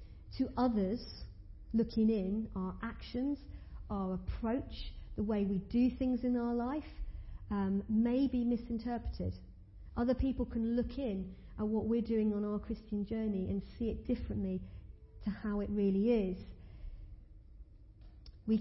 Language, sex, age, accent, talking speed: English, female, 50-69, British, 140 wpm